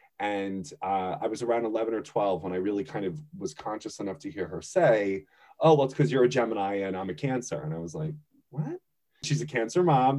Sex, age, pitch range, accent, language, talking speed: male, 20-39, 100-155 Hz, American, English, 235 wpm